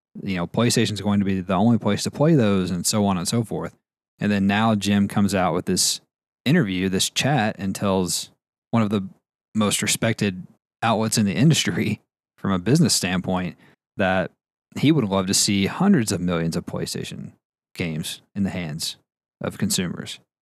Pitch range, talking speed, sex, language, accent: 95-115 Hz, 180 wpm, male, English, American